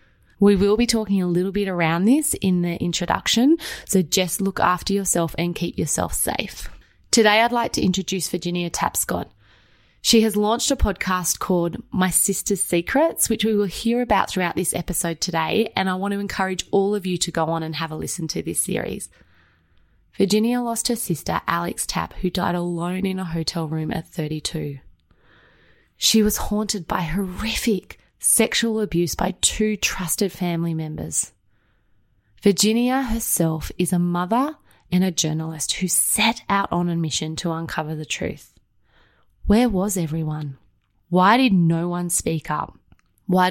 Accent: Australian